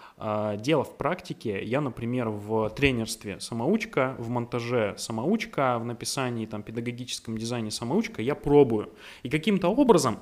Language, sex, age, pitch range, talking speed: Russian, male, 20-39, 110-145 Hz, 130 wpm